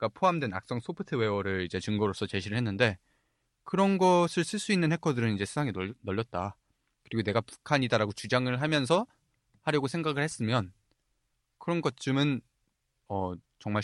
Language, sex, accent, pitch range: Korean, male, native, 100-135 Hz